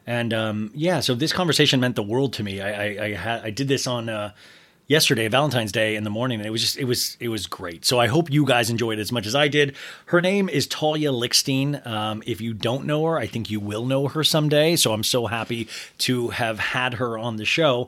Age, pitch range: 30-49, 110-135 Hz